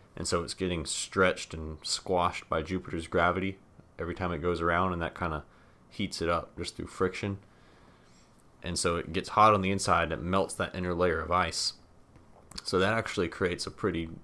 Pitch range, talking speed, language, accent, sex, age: 80-95 Hz, 200 wpm, English, American, male, 30-49